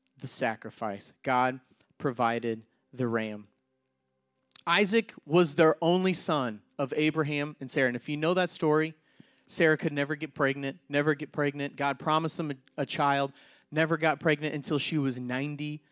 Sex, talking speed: male, 160 wpm